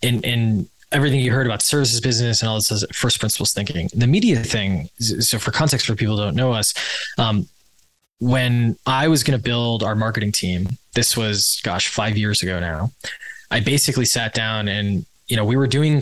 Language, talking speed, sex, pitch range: English, 200 wpm, male, 105-125 Hz